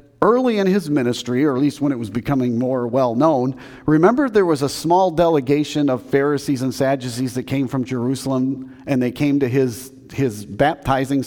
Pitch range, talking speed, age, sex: 130-175 Hz, 185 wpm, 40-59, male